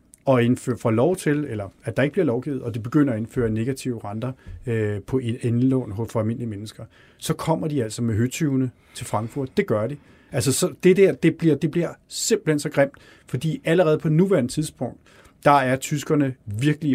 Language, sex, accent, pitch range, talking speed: Danish, male, native, 115-145 Hz, 195 wpm